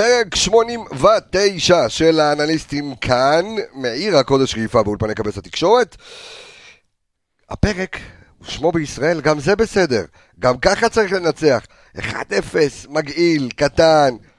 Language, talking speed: Hebrew, 100 wpm